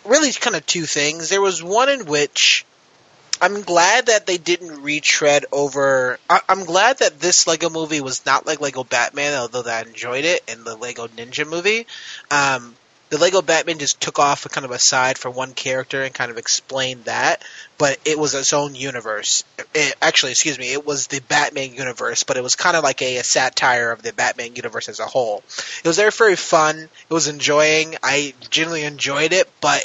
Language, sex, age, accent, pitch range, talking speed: English, male, 20-39, American, 135-165 Hz, 200 wpm